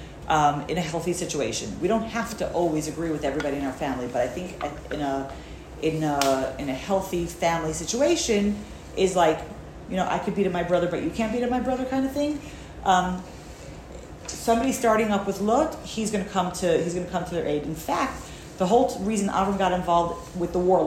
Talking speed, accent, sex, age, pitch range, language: 225 wpm, American, female, 40-59, 165-220 Hz, English